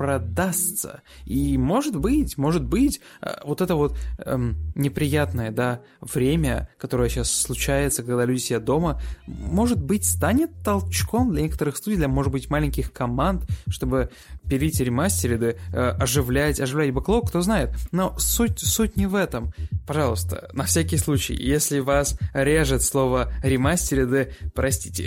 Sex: male